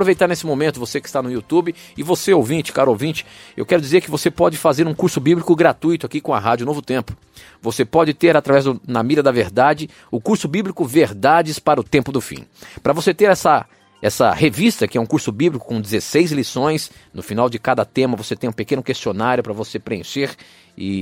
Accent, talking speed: Brazilian, 215 wpm